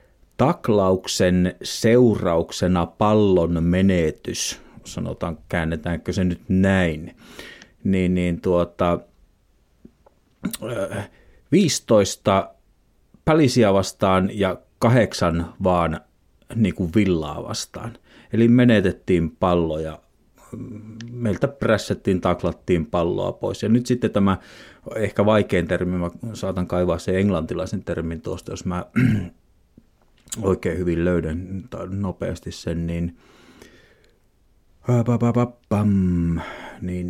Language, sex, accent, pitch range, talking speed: Finnish, male, native, 85-105 Hz, 85 wpm